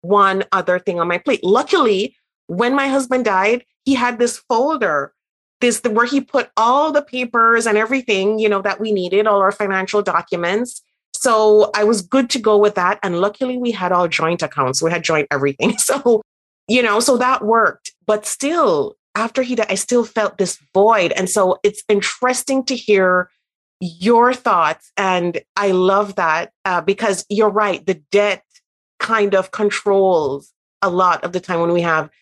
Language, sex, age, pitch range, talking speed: English, female, 30-49, 180-235 Hz, 180 wpm